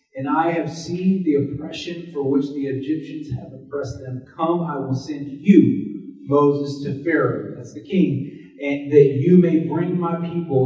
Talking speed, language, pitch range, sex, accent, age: 175 wpm, English, 145-190 Hz, male, American, 30-49